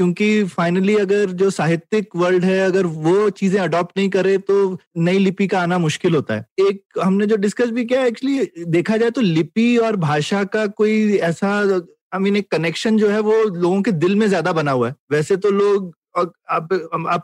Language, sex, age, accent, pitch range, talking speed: Hindi, male, 20-39, native, 175-215 Hz, 200 wpm